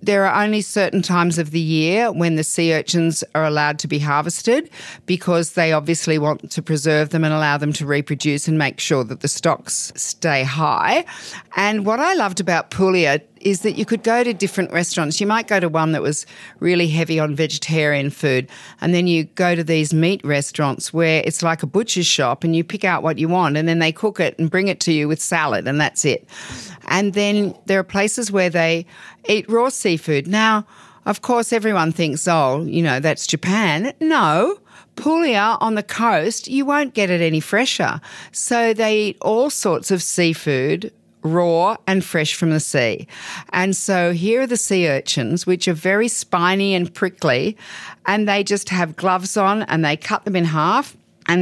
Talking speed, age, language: 195 wpm, 40-59, Italian